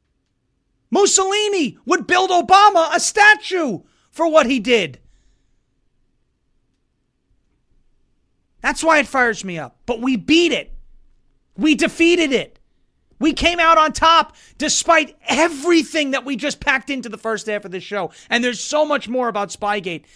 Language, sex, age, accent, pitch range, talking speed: English, male, 30-49, American, 250-340 Hz, 145 wpm